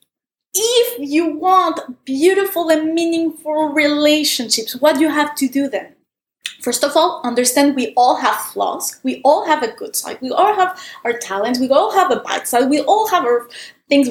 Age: 20-39